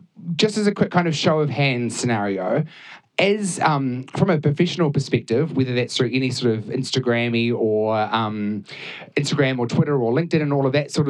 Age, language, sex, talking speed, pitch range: 30-49, English, male, 190 wpm, 130-165 Hz